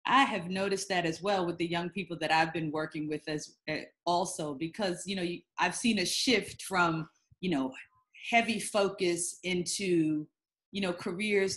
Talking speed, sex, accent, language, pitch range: 180 wpm, female, American, English, 165-205 Hz